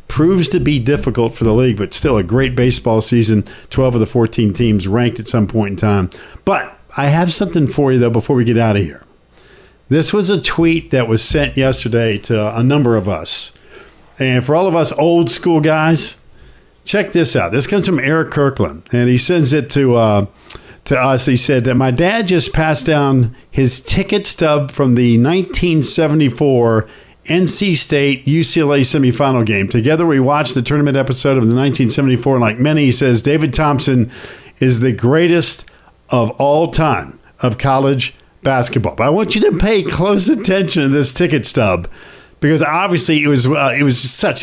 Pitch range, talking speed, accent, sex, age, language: 120-160 Hz, 185 wpm, American, male, 50-69, English